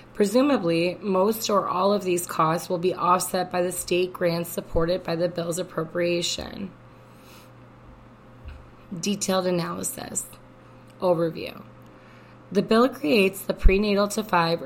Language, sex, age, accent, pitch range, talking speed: English, female, 20-39, American, 170-190 Hz, 120 wpm